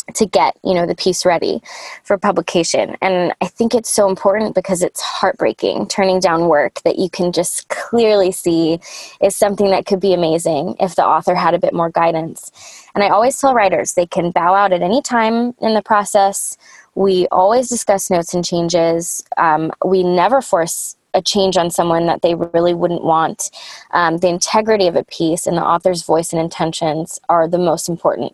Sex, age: female, 20-39